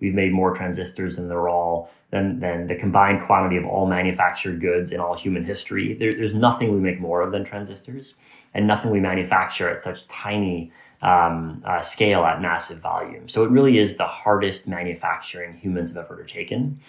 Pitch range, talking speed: 85-105 Hz, 190 wpm